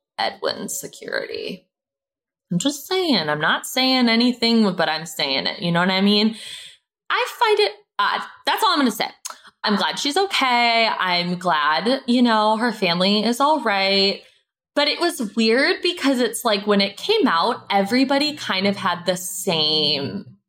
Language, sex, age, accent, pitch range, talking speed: English, female, 20-39, American, 170-245 Hz, 170 wpm